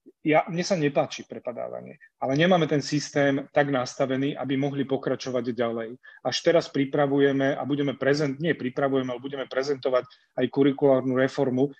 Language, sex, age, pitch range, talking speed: Slovak, male, 30-49, 125-145 Hz, 145 wpm